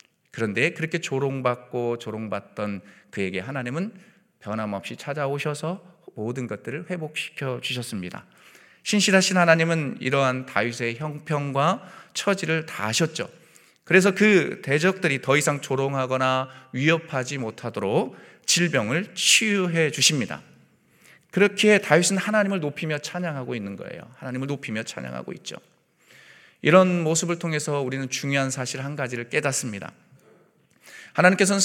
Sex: male